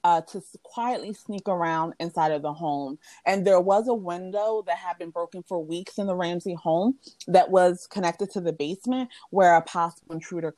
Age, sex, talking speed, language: 30-49, female, 195 wpm, English